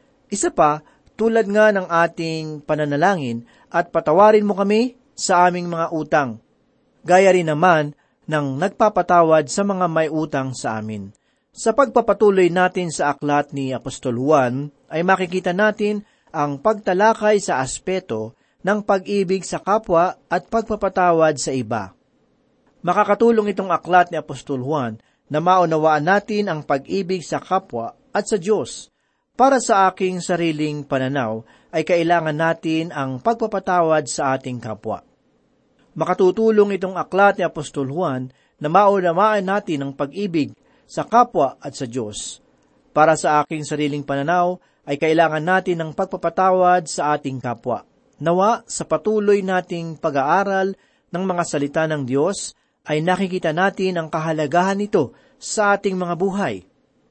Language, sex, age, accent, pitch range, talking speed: Filipino, male, 40-59, native, 150-200 Hz, 135 wpm